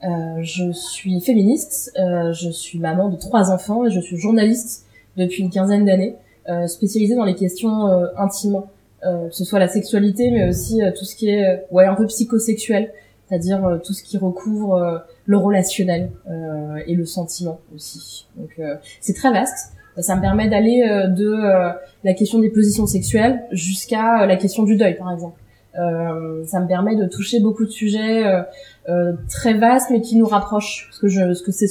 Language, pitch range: French, 180-210 Hz